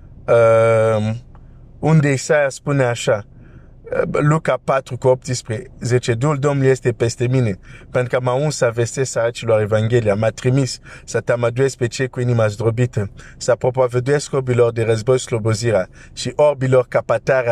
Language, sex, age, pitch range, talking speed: Romanian, male, 50-69, 125-145 Hz, 135 wpm